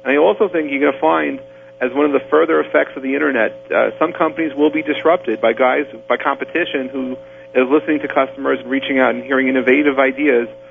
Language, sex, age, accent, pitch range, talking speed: English, male, 40-59, American, 120-140 Hz, 215 wpm